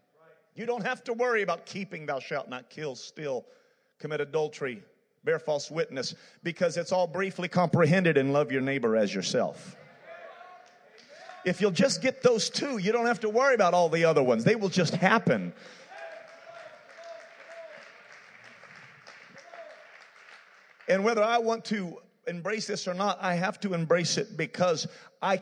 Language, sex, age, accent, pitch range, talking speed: English, male, 40-59, American, 180-255 Hz, 150 wpm